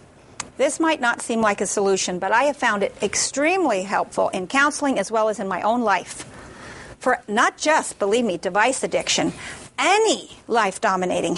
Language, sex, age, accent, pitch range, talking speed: English, female, 50-69, American, 210-260 Hz, 170 wpm